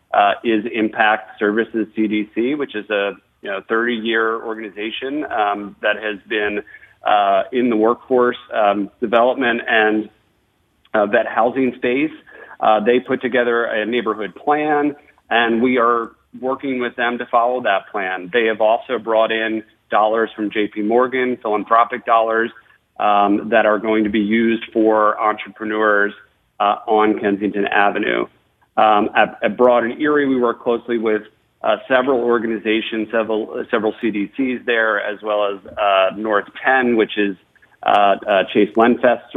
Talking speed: 150 wpm